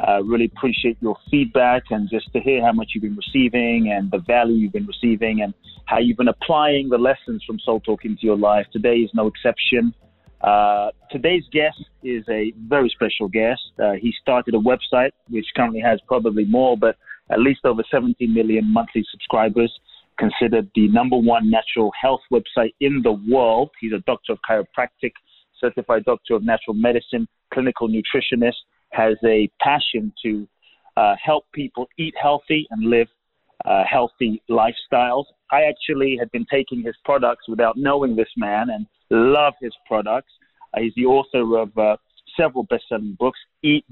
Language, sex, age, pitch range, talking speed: English, male, 30-49, 110-135 Hz, 170 wpm